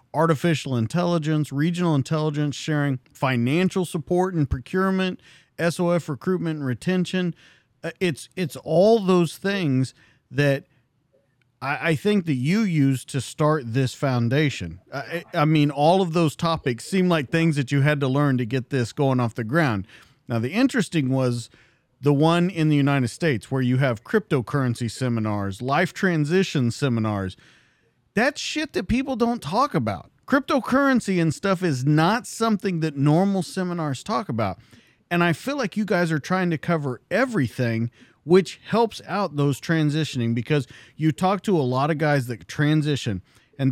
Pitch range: 125-170 Hz